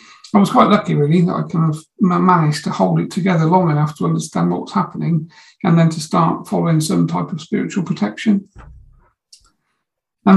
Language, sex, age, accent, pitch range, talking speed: English, male, 50-69, British, 160-190 Hz, 185 wpm